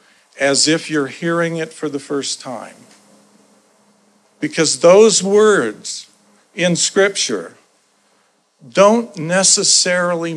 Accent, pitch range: American, 150-190 Hz